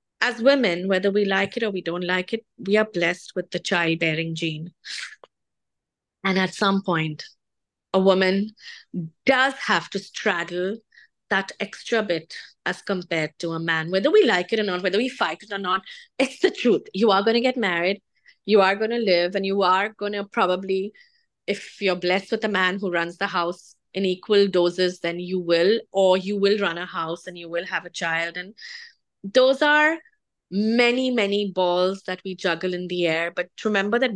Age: 30-49